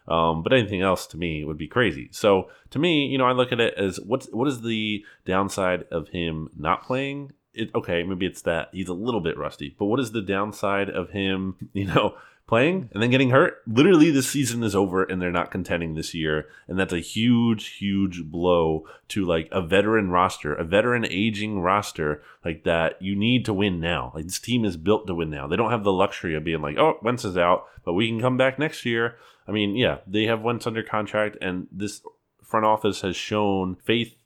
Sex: male